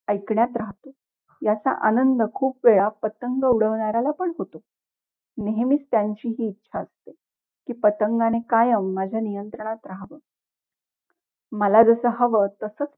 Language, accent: Marathi, native